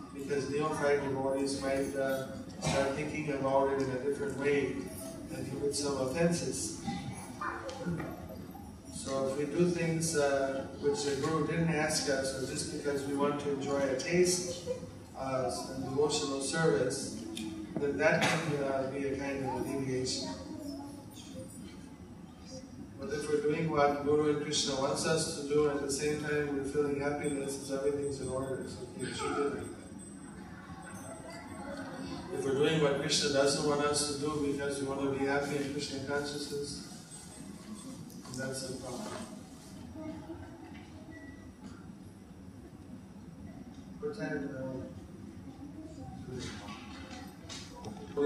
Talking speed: 125 wpm